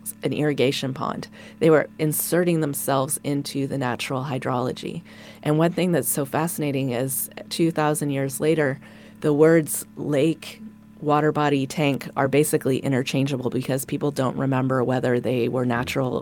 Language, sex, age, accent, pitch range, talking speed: English, female, 30-49, American, 130-150 Hz, 140 wpm